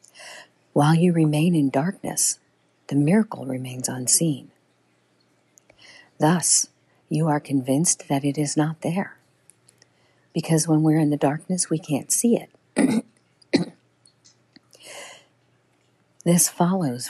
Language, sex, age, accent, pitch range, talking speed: English, female, 50-69, American, 130-175 Hz, 105 wpm